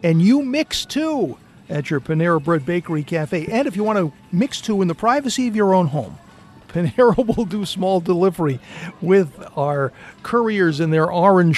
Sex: male